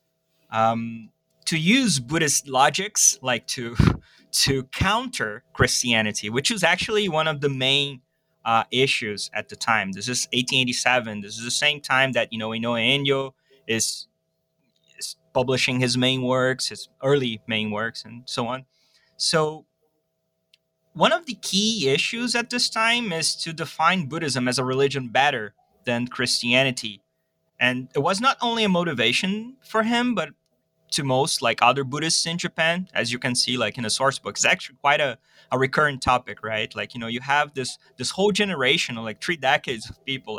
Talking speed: 170 wpm